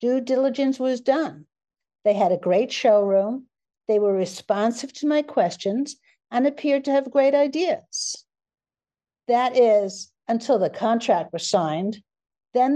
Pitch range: 205-270 Hz